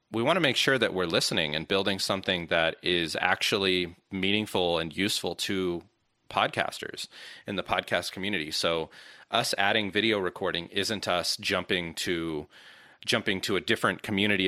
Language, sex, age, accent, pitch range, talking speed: English, male, 30-49, American, 85-100 Hz, 150 wpm